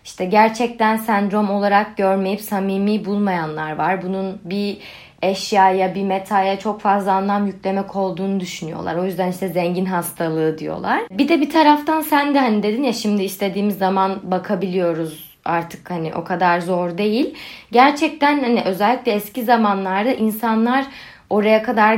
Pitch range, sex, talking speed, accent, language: 185-245 Hz, female, 140 wpm, native, Turkish